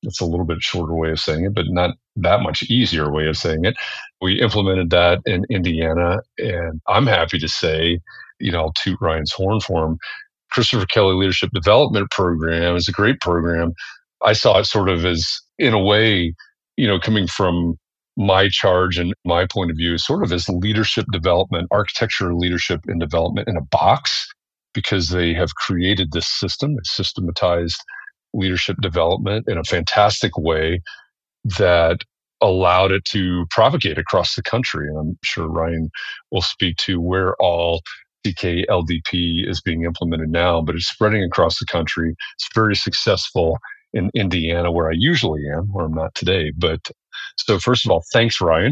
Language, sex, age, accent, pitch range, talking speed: English, male, 40-59, American, 85-100 Hz, 170 wpm